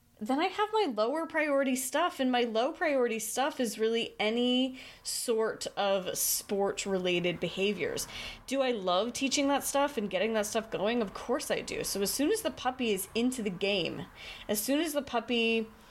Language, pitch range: English, 190-235 Hz